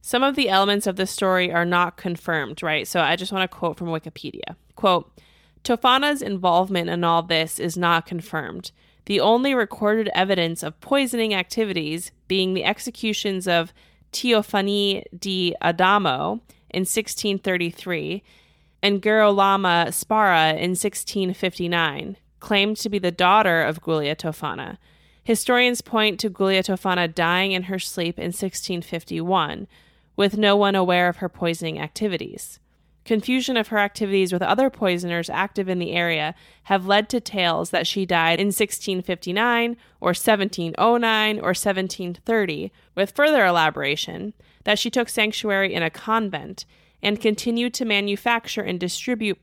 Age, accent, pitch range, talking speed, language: 20-39, American, 175-215 Hz, 140 wpm, English